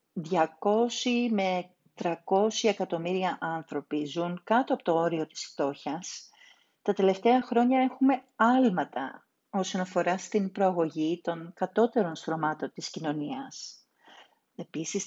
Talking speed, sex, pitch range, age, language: 105 wpm, female, 175-235 Hz, 40-59, Greek